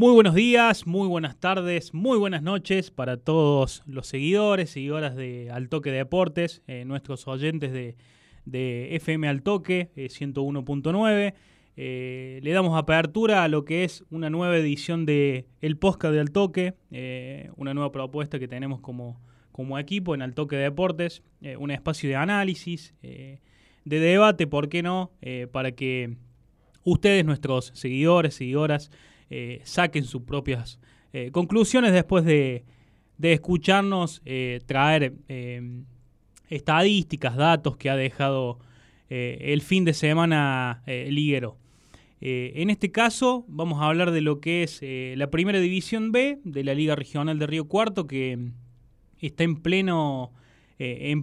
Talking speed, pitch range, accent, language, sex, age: 150 wpm, 130-175 Hz, Argentinian, Spanish, male, 20-39